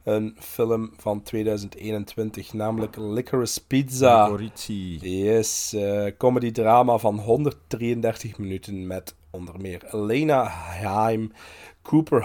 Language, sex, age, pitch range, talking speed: Dutch, male, 40-59, 100-125 Hz, 95 wpm